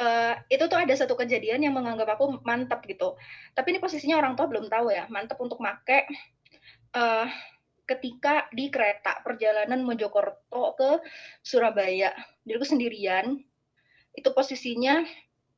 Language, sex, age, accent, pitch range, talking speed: Indonesian, female, 20-39, native, 230-285 Hz, 135 wpm